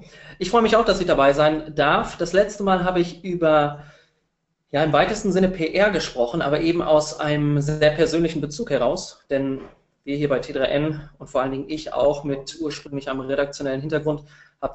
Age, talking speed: 20-39, 190 wpm